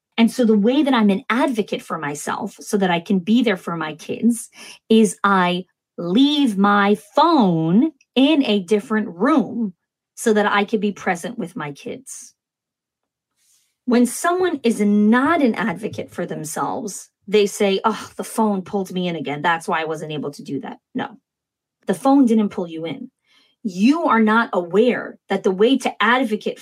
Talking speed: 175 wpm